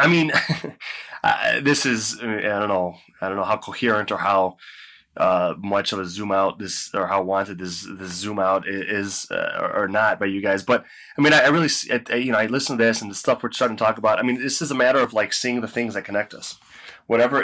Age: 20-39